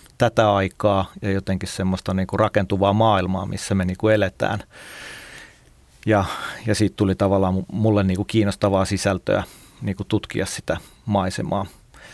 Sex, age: male, 40-59